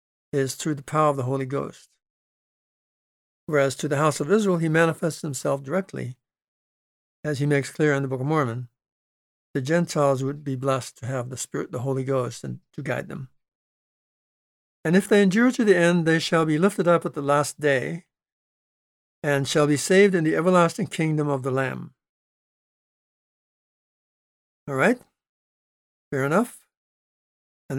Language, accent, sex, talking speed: English, American, male, 160 wpm